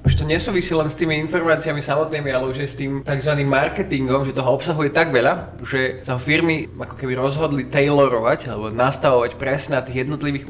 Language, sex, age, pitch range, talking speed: Slovak, male, 20-39, 130-155 Hz, 185 wpm